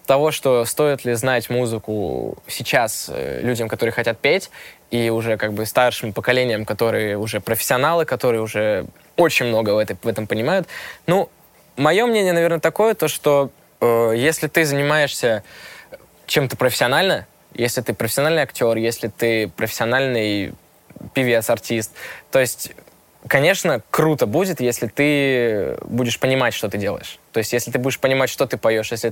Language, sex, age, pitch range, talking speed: Russian, male, 20-39, 115-150 Hz, 150 wpm